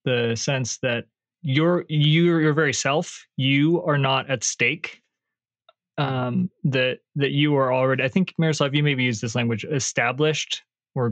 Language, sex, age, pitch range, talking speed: English, male, 20-39, 120-145 Hz, 155 wpm